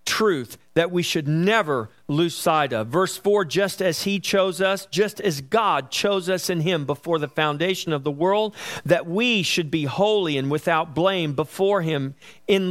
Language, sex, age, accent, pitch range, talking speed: English, male, 50-69, American, 160-205 Hz, 185 wpm